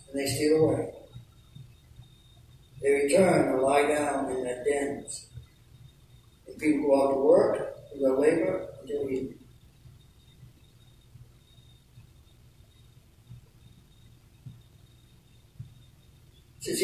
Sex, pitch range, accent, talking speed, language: male, 120-150 Hz, American, 80 wpm, English